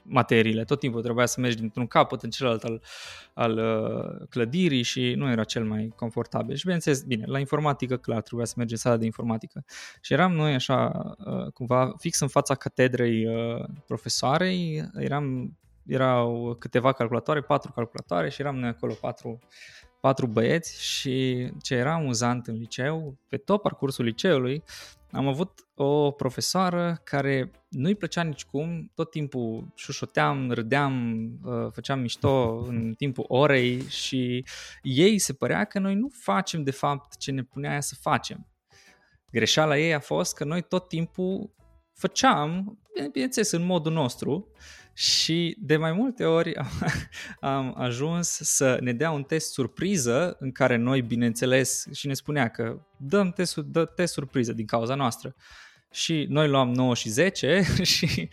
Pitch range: 120-155 Hz